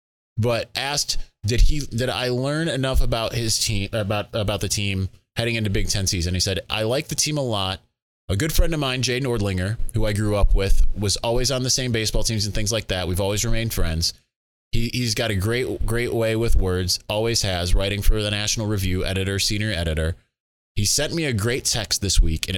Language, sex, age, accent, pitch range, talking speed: English, male, 20-39, American, 95-125 Hz, 220 wpm